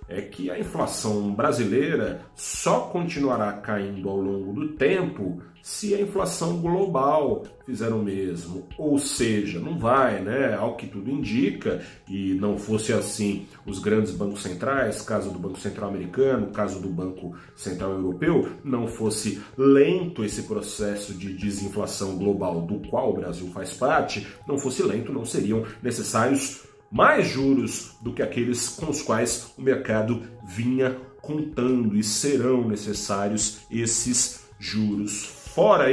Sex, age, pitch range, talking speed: male, 40-59, 100-135 Hz, 140 wpm